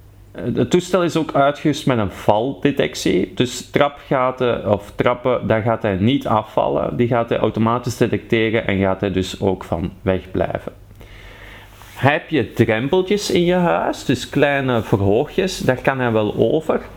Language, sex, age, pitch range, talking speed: Dutch, male, 40-59, 100-125 Hz, 150 wpm